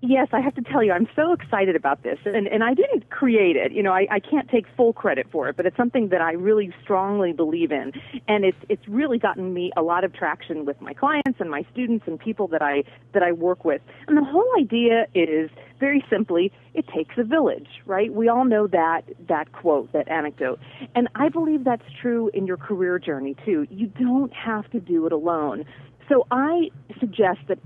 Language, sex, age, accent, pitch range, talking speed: English, female, 40-59, American, 175-250 Hz, 220 wpm